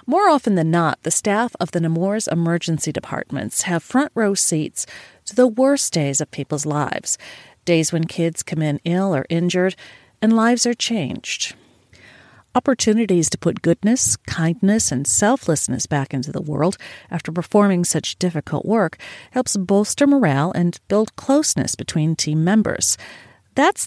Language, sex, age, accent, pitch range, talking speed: English, female, 40-59, American, 160-220 Hz, 150 wpm